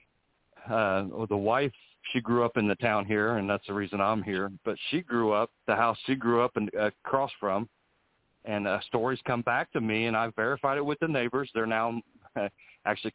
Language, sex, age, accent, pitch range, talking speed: English, male, 50-69, American, 105-125 Hz, 205 wpm